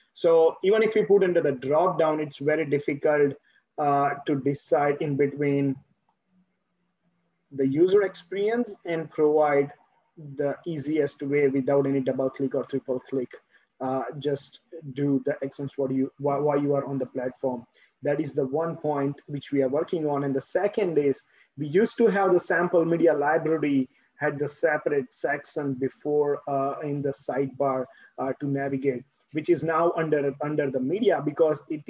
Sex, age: male, 20-39